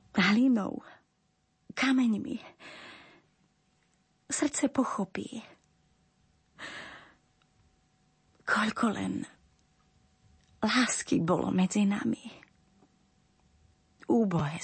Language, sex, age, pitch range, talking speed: Slovak, female, 30-49, 175-195 Hz, 45 wpm